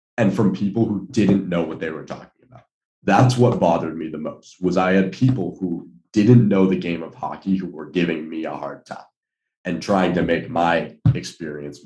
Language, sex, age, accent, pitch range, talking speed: English, male, 30-49, American, 80-95 Hz, 205 wpm